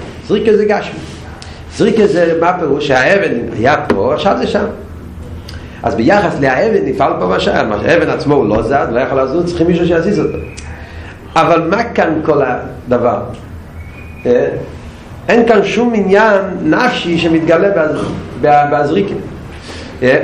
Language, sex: Hebrew, male